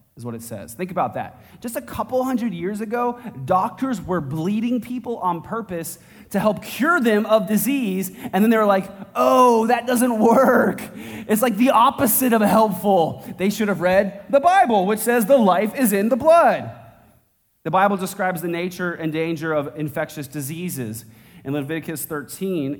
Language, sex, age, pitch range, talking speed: English, male, 30-49, 155-215 Hz, 175 wpm